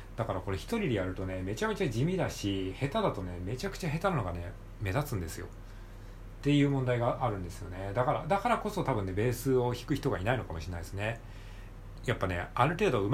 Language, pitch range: Japanese, 100-140 Hz